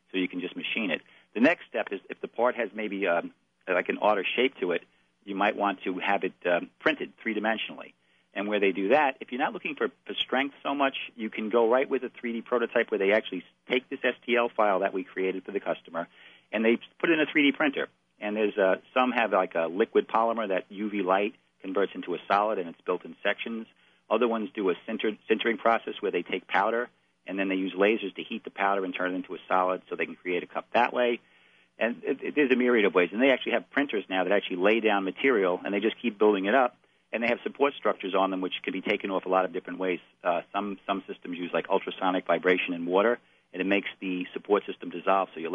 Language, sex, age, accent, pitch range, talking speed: English, male, 50-69, American, 95-115 Hz, 250 wpm